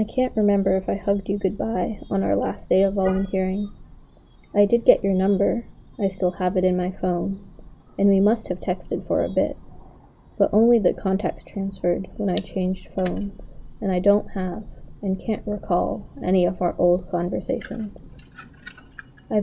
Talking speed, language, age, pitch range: 175 wpm, English, 20-39, 185-205 Hz